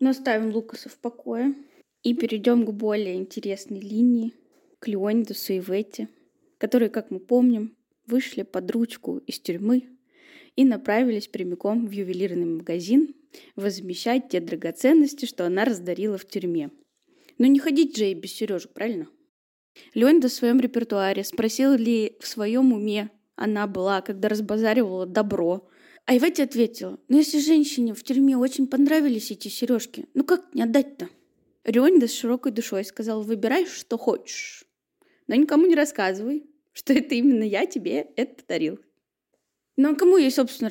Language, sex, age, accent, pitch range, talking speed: Russian, female, 20-39, native, 210-280 Hz, 145 wpm